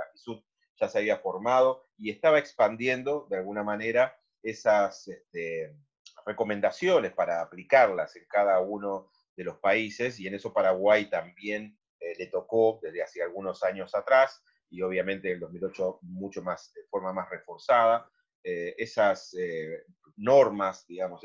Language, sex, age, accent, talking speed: Spanish, male, 30-49, Argentinian, 145 wpm